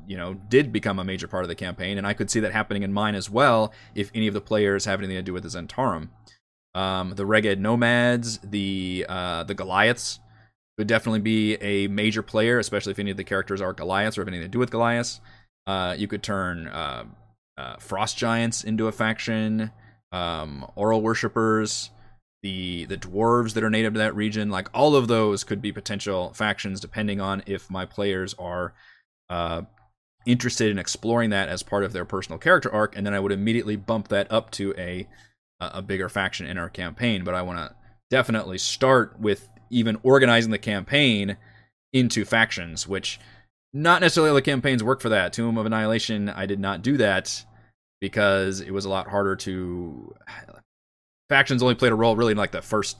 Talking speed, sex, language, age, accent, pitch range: 195 wpm, male, English, 20-39, American, 95-110 Hz